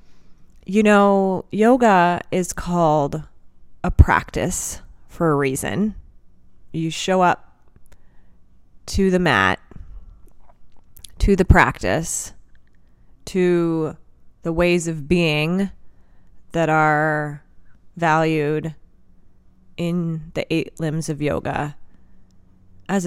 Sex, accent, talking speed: female, American, 90 wpm